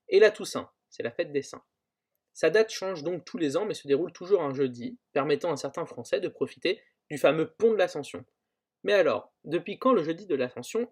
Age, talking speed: 20-39, 220 wpm